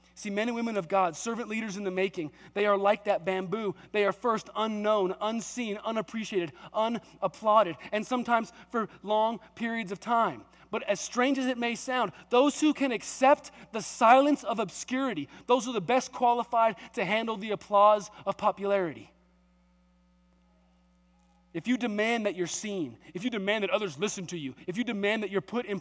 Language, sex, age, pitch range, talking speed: English, male, 30-49, 150-225 Hz, 180 wpm